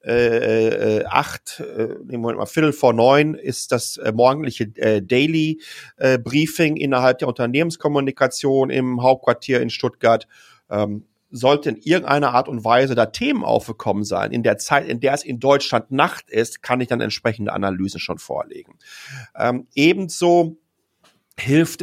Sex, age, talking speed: male, 40-59, 145 wpm